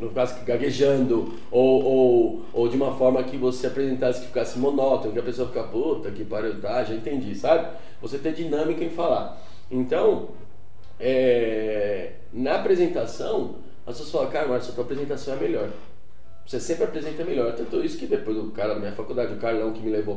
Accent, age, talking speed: Brazilian, 20-39, 185 wpm